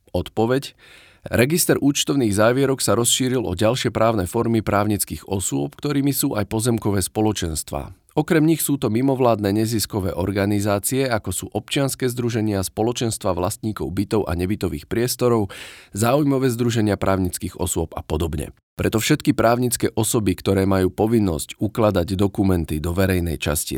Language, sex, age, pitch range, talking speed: Slovak, male, 40-59, 90-115 Hz, 130 wpm